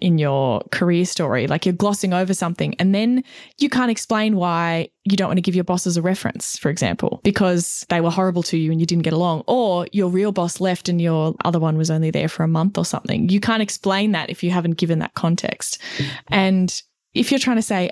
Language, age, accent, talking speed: English, 20-39, Australian, 235 wpm